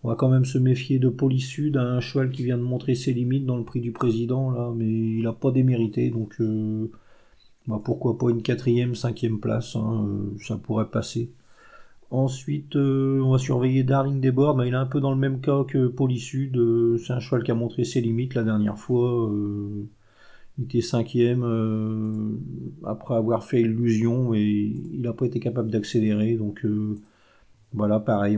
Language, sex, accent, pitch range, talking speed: French, male, French, 110-130 Hz, 195 wpm